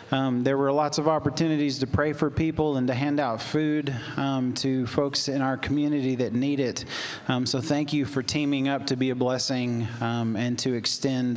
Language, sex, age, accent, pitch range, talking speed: English, male, 30-49, American, 125-150 Hz, 205 wpm